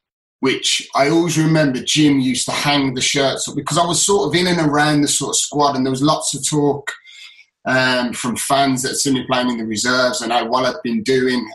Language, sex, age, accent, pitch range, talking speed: English, male, 30-49, British, 120-145 Hz, 235 wpm